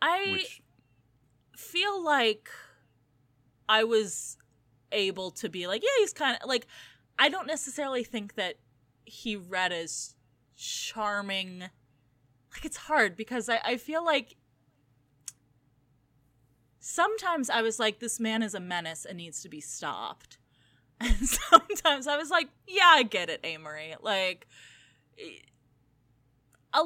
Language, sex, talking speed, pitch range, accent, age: English, female, 125 wpm, 145-235 Hz, American, 20-39